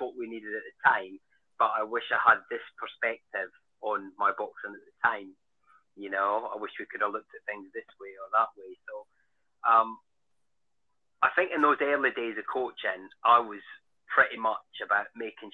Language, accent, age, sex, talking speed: English, British, 30-49, male, 195 wpm